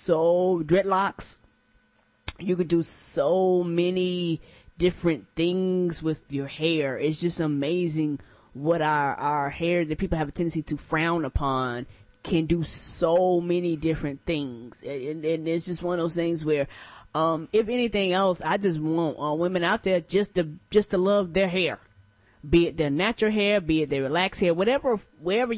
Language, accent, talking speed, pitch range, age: English, American, 170 wpm, 155-205 Hz, 20-39